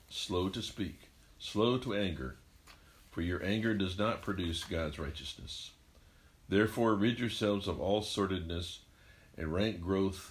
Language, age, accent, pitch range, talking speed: English, 60-79, American, 80-100 Hz, 135 wpm